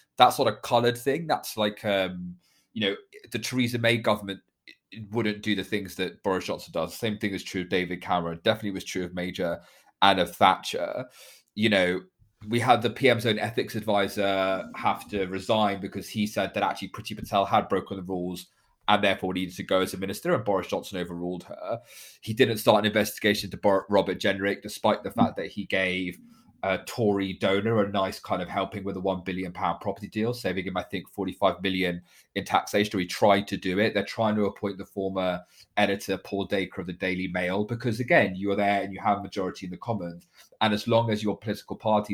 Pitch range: 95-110 Hz